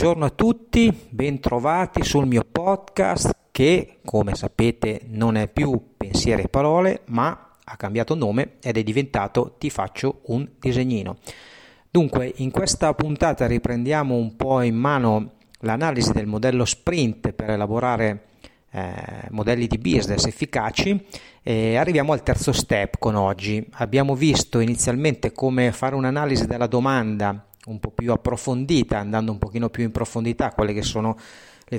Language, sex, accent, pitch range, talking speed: Italian, male, native, 110-150 Hz, 145 wpm